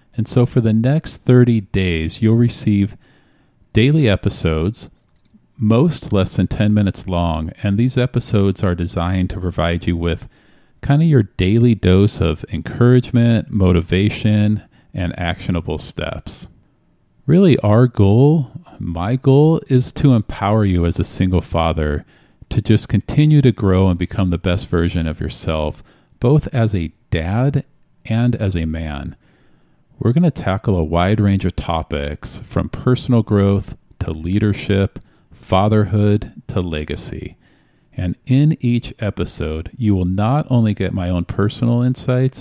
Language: English